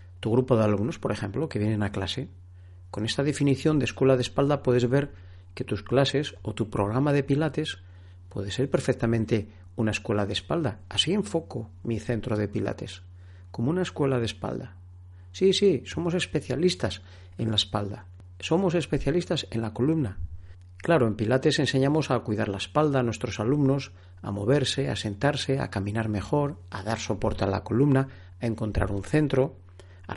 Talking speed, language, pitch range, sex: 170 wpm, Spanish, 105-145 Hz, male